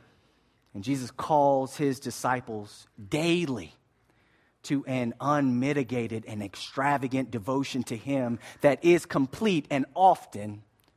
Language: English